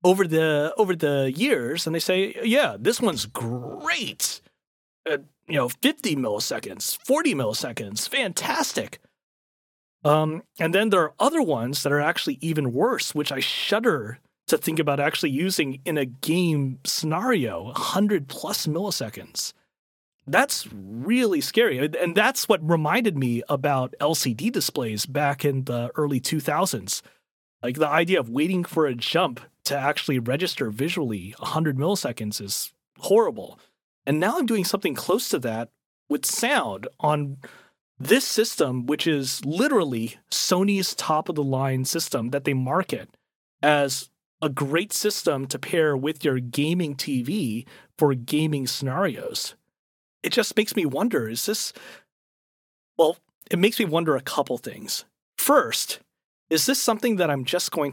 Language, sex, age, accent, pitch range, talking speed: English, male, 30-49, American, 135-185 Hz, 145 wpm